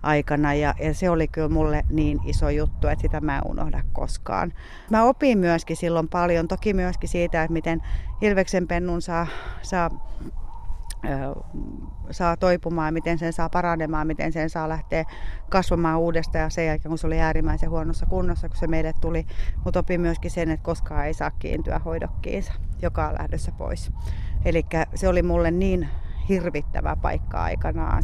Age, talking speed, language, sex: 30-49, 160 wpm, Finnish, female